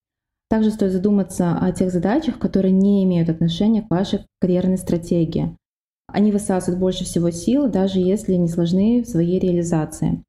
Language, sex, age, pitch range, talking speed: Russian, female, 20-39, 175-210 Hz, 150 wpm